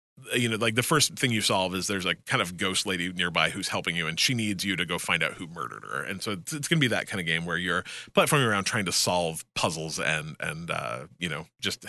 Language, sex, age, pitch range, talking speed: English, male, 30-49, 95-135 Hz, 275 wpm